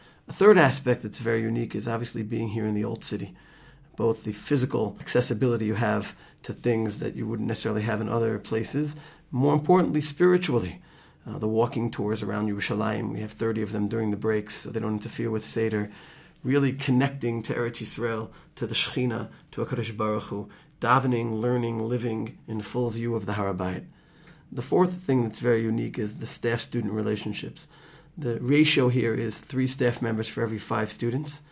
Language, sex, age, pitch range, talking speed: English, male, 40-59, 110-135 Hz, 180 wpm